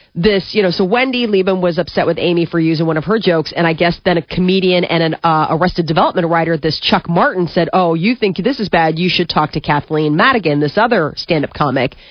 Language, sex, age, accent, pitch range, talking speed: English, female, 30-49, American, 160-195 Hz, 240 wpm